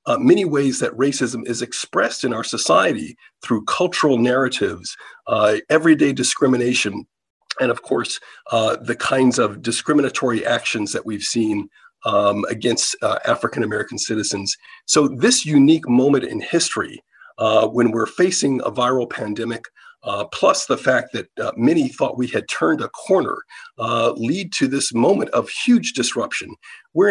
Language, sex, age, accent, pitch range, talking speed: English, male, 50-69, American, 120-165 Hz, 150 wpm